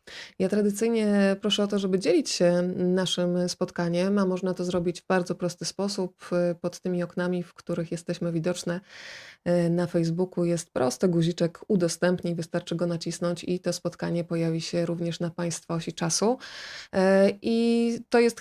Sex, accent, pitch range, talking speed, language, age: female, native, 175-205 Hz, 155 wpm, Polish, 20-39